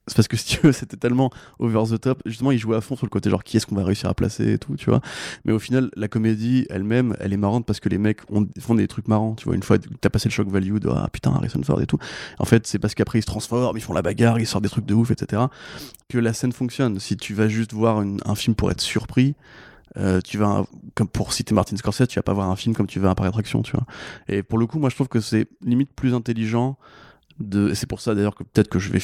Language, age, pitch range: French, 20-39, 100-120 Hz